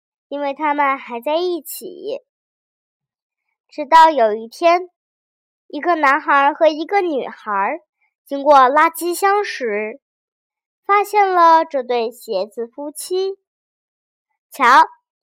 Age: 10-29